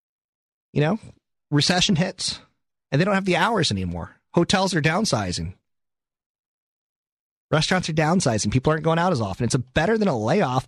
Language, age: English, 30-49